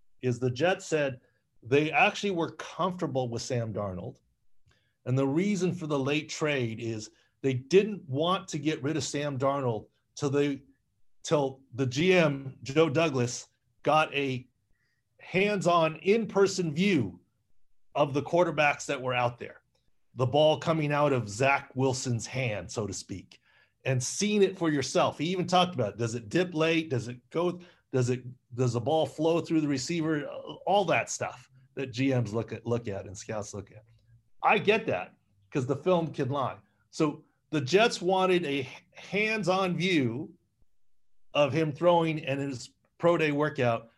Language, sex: English, male